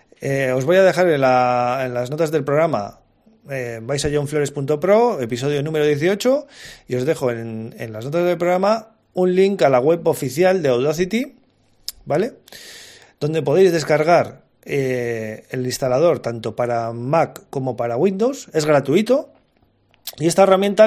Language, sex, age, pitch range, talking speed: Spanish, male, 30-49, 130-180 Hz, 150 wpm